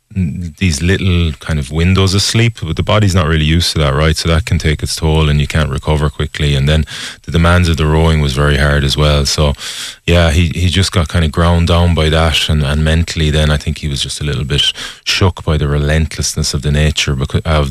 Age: 20-39